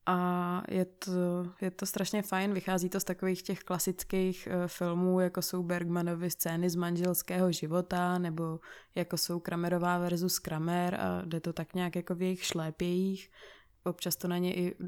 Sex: female